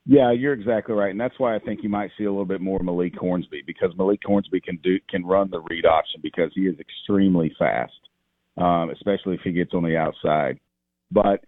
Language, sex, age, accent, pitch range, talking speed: English, male, 50-69, American, 80-95 Hz, 220 wpm